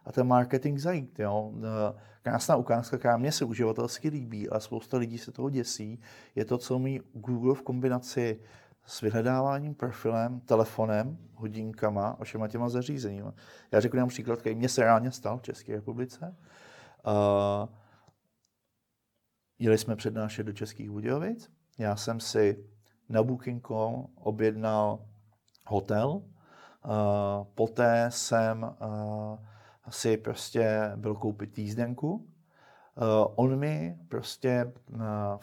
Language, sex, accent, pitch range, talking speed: Czech, male, native, 110-130 Hz, 125 wpm